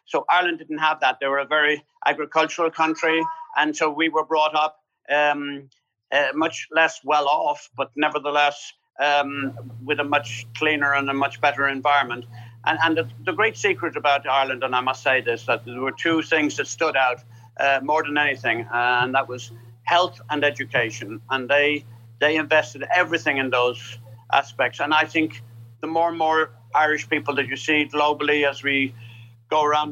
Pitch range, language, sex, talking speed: 125-155 Hz, English, male, 180 wpm